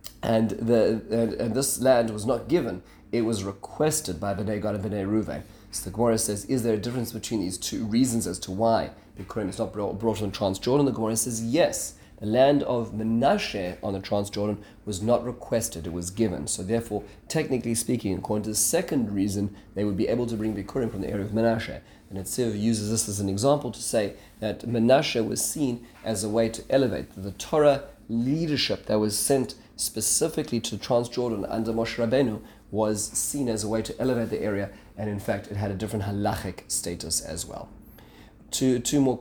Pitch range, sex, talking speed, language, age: 105-120 Hz, male, 205 wpm, English, 30-49